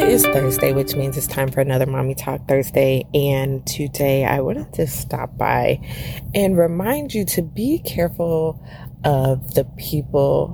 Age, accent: 20-39, American